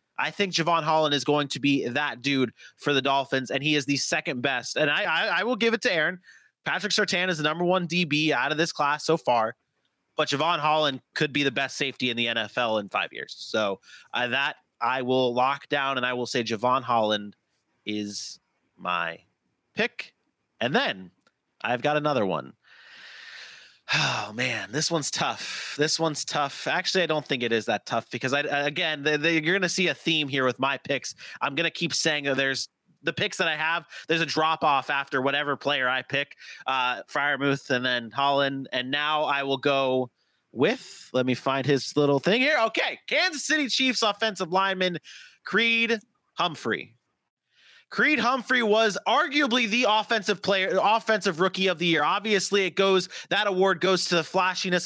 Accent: American